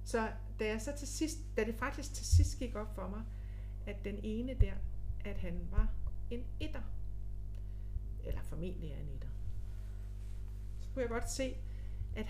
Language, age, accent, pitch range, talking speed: Danish, 60-79, native, 95-105 Hz, 170 wpm